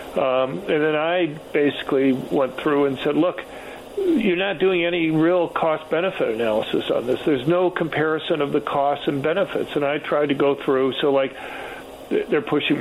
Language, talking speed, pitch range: English, 175 wpm, 130-170 Hz